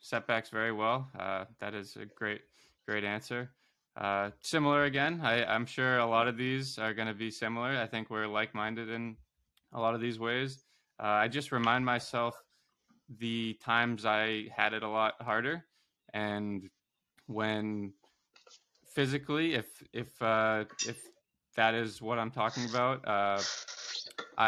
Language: English